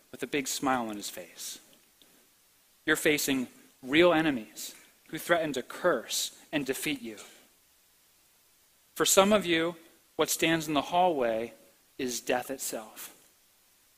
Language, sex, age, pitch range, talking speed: English, male, 40-59, 135-170 Hz, 130 wpm